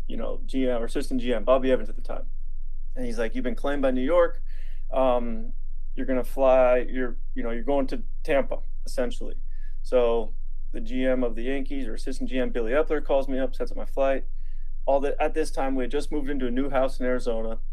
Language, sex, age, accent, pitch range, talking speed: English, male, 20-39, American, 125-160 Hz, 220 wpm